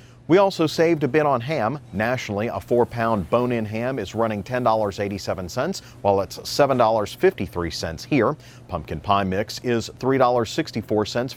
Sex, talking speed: male, 125 wpm